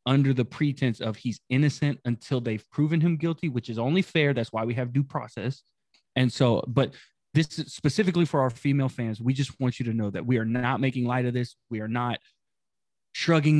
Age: 20-39